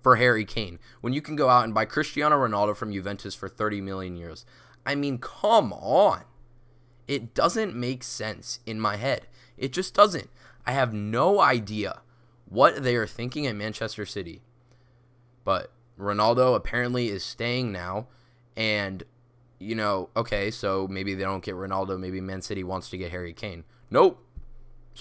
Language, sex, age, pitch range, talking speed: English, male, 20-39, 100-120 Hz, 165 wpm